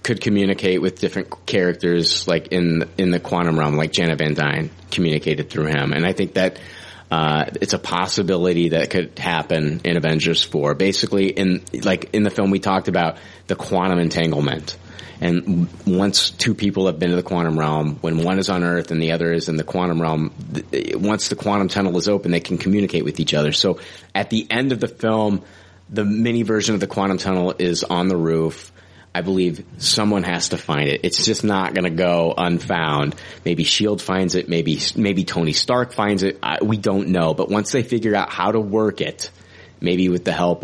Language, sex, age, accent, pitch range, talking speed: English, male, 30-49, American, 85-100 Hz, 205 wpm